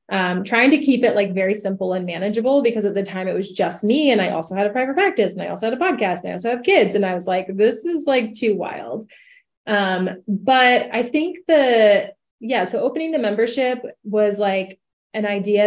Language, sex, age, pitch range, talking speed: English, female, 20-39, 190-230 Hz, 225 wpm